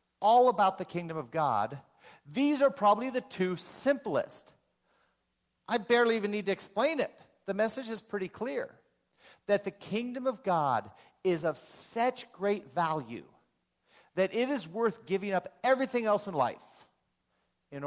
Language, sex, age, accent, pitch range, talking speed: English, male, 50-69, American, 180-235 Hz, 150 wpm